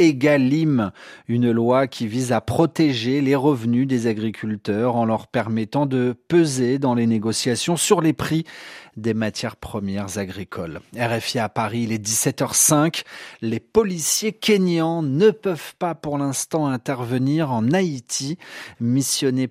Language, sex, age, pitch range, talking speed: French, male, 30-49, 120-165 Hz, 135 wpm